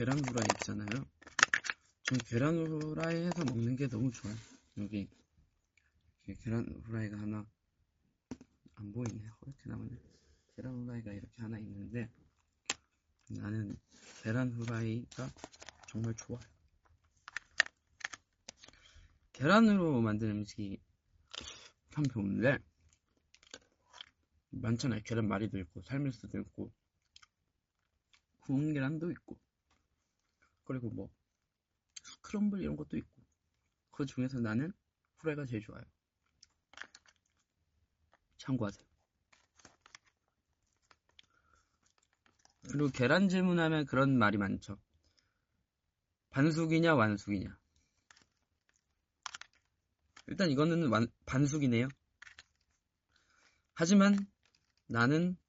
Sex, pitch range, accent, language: male, 95-130 Hz, native, Korean